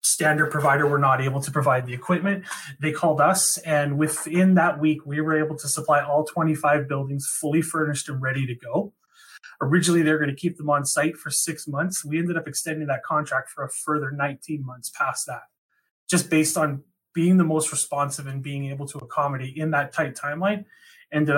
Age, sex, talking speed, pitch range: 30-49, male, 200 wpm, 145-165 Hz